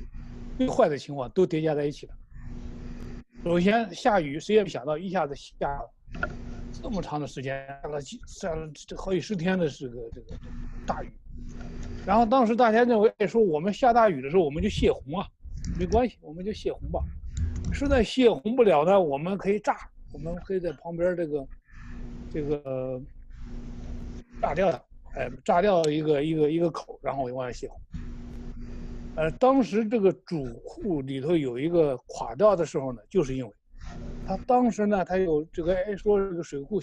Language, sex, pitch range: Chinese, male, 135-200 Hz